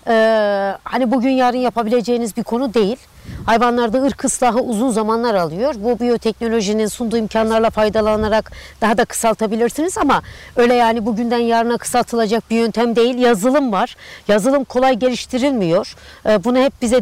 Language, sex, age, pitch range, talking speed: Turkish, female, 60-79, 215-265 Hz, 140 wpm